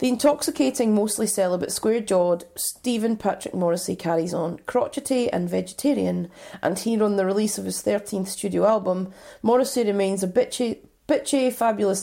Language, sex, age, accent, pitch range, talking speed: English, female, 30-49, British, 185-235 Hz, 145 wpm